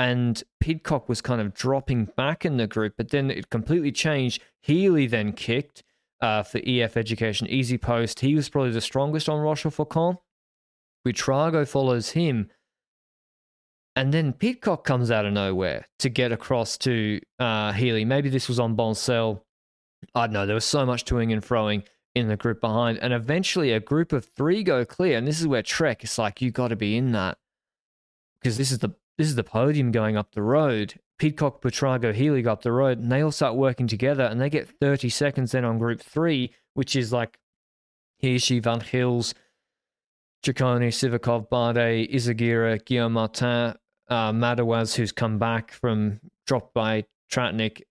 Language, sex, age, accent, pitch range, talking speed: English, male, 20-39, Australian, 115-135 Hz, 175 wpm